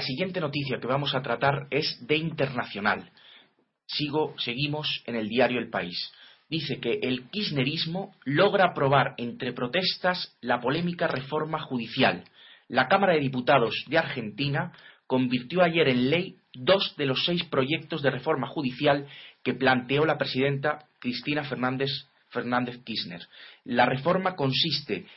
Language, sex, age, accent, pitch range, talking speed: Spanish, male, 30-49, Spanish, 125-165 Hz, 140 wpm